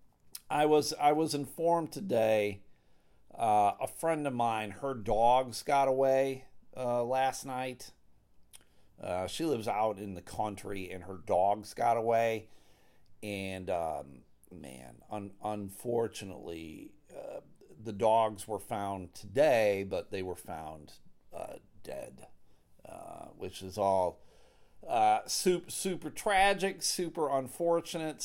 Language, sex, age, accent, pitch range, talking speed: English, male, 50-69, American, 100-135 Hz, 120 wpm